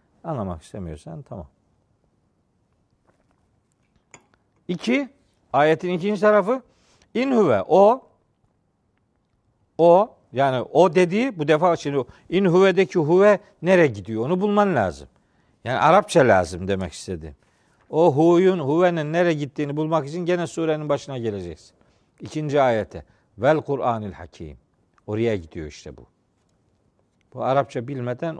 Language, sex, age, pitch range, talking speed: Turkish, male, 50-69, 110-175 Hz, 110 wpm